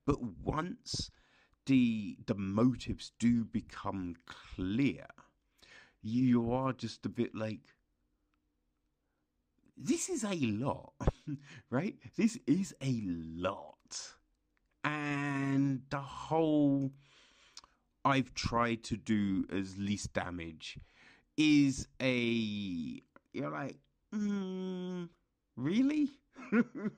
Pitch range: 110-150 Hz